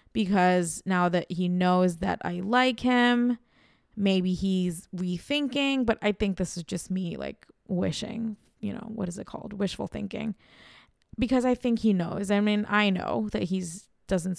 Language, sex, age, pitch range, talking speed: English, female, 20-39, 180-225 Hz, 170 wpm